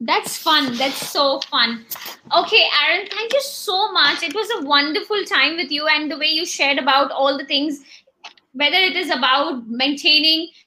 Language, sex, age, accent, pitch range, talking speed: English, female, 20-39, Indian, 270-330 Hz, 180 wpm